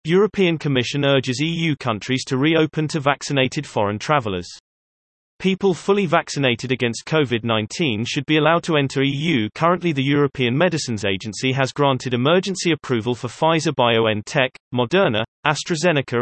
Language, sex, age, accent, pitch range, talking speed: English, male, 30-49, British, 120-160 Hz, 130 wpm